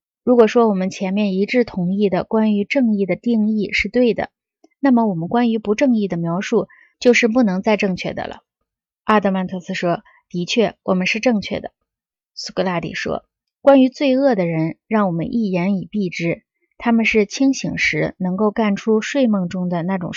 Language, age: Chinese, 20-39